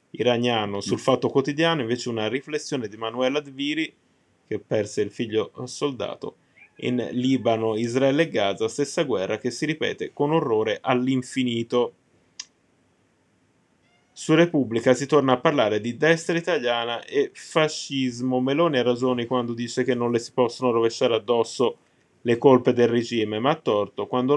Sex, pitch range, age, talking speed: male, 110-140 Hz, 20-39, 145 wpm